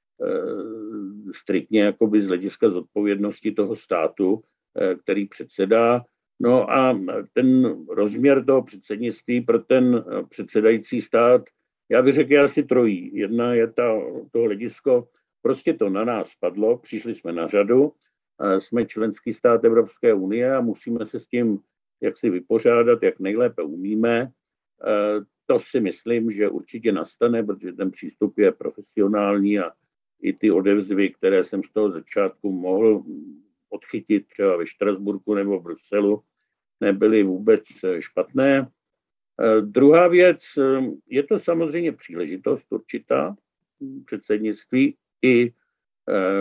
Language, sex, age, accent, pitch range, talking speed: Czech, male, 50-69, native, 105-150 Hz, 120 wpm